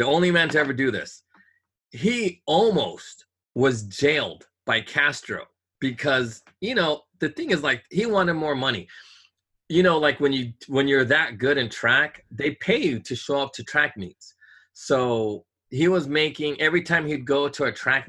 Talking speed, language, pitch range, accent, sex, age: 180 wpm, English, 115-150 Hz, American, male, 30-49